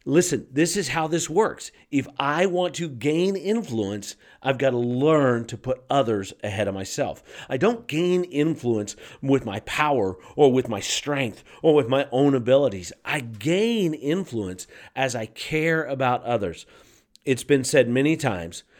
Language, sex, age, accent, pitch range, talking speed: English, male, 40-59, American, 110-160 Hz, 165 wpm